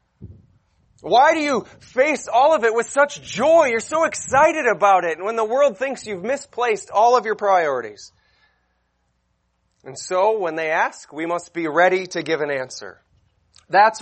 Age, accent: 30-49, American